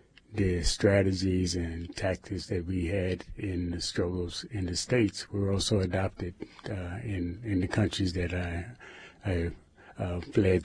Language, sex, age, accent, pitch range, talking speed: English, male, 30-49, American, 90-105 Hz, 145 wpm